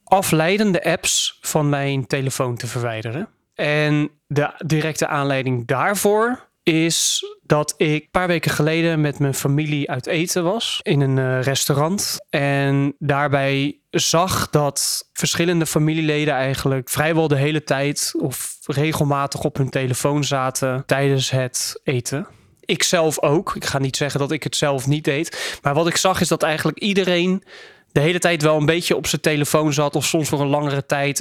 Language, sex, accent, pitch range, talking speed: Dutch, male, Dutch, 140-165 Hz, 165 wpm